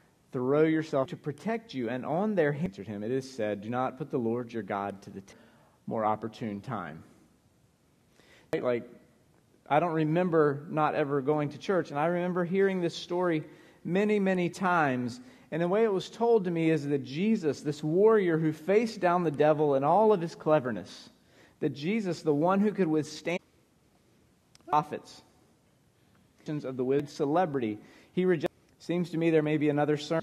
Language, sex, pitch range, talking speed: English, male, 130-175 Hz, 175 wpm